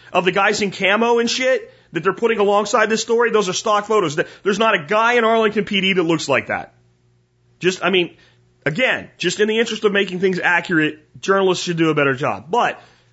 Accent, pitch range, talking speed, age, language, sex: American, 145-235 Hz, 215 wpm, 30-49, English, male